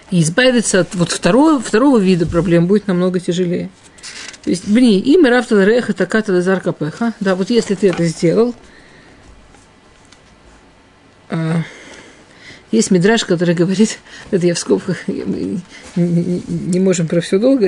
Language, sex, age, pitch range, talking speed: Russian, female, 50-69, 170-200 Hz, 135 wpm